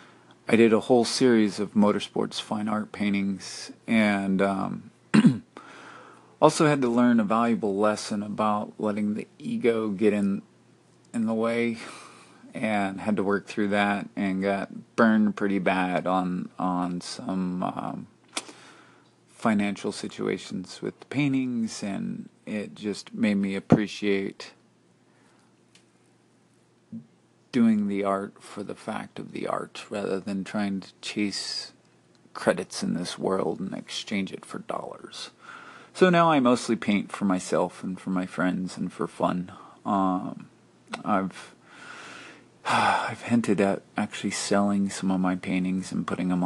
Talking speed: 135 wpm